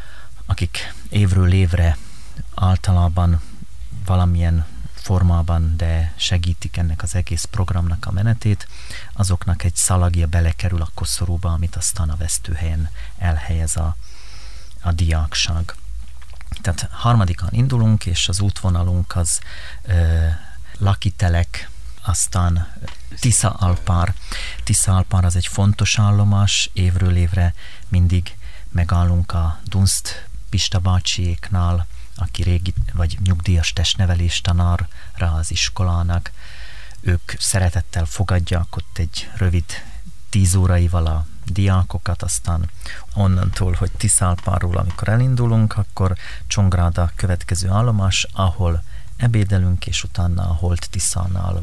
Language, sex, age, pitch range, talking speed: Hungarian, male, 30-49, 85-95 Hz, 100 wpm